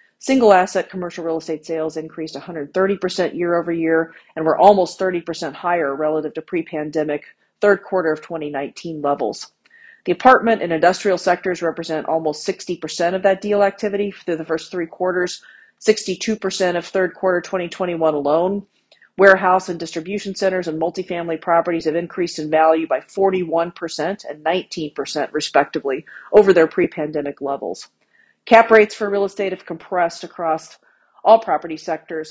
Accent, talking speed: American, 140 wpm